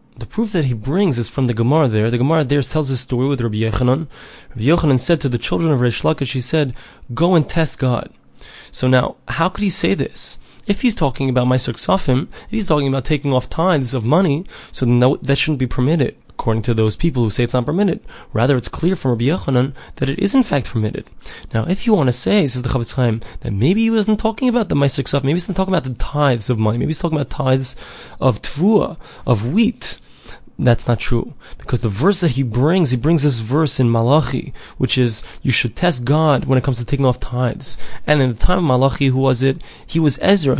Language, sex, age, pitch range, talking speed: English, male, 20-39, 125-160 Hz, 235 wpm